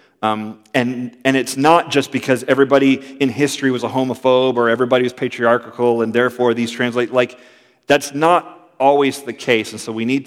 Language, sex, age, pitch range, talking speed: English, male, 40-59, 105-130 Hz, 180 wpm